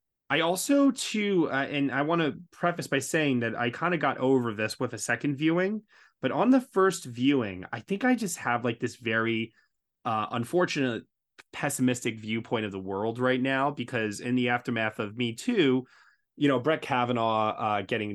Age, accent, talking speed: 20-39, American, 190 wpm